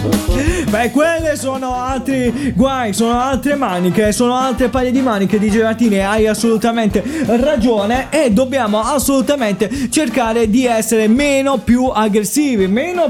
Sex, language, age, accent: male, Italian, 20-39, native